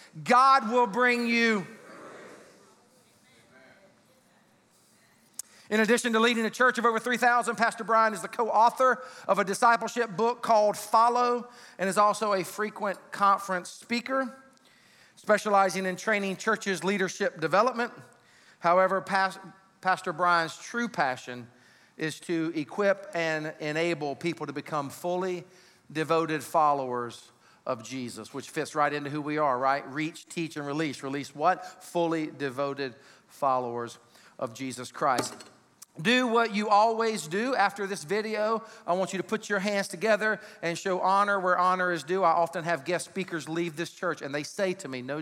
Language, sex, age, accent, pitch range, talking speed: English, male, 40-59, American, 150-210 Hz, 150 wpm